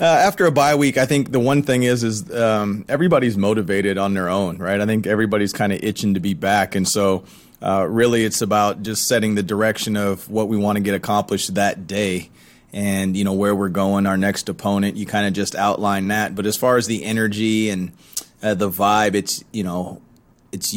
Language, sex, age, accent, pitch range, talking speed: English, male, 30-49, American, 100-115 Hz, 220 wpm